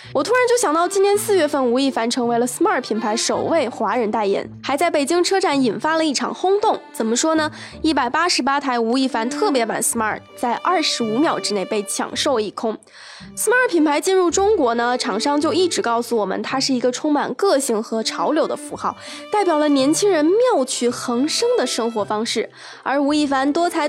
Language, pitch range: Chinese, 250-385 Hz